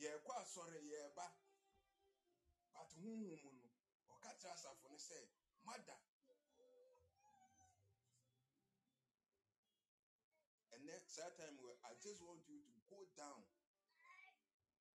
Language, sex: English, male